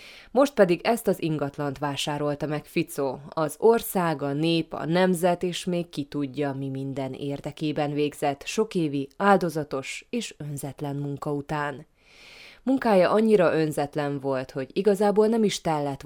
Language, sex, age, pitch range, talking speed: Hungarian, female, 20-39, 145-175 Hz, 140 wpm